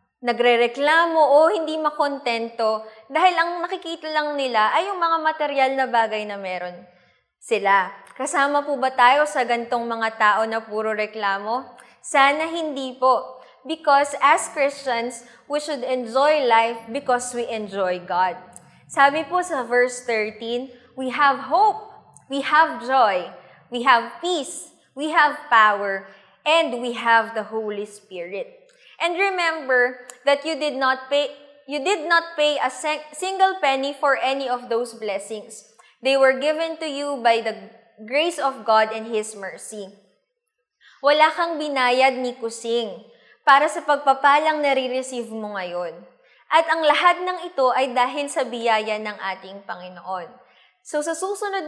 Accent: Filipino